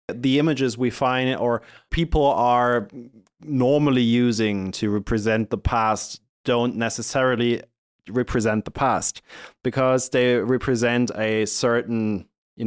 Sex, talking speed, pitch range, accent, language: male, 115 wpm, 110-130 Hz, German, German